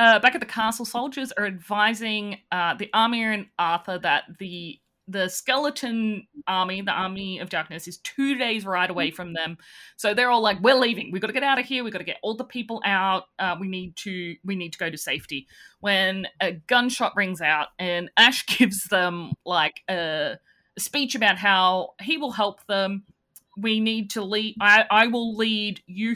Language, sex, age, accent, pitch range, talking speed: English, female, 30-49, Australian, 185-265 Hz, 205 wpm